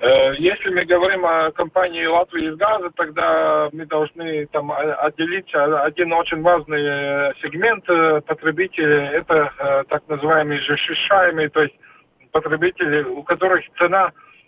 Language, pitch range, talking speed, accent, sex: Russian, 150-180 Hz, 115 wpm, native, male